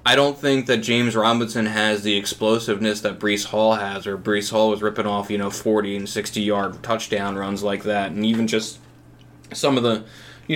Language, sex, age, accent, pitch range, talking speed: English, male, 20-39, American, 110-125 Hz, 200 wpm